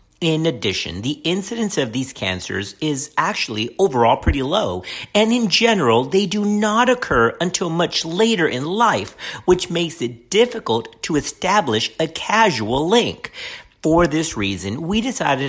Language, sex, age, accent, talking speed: English, male, 50-69, American, 145 wpm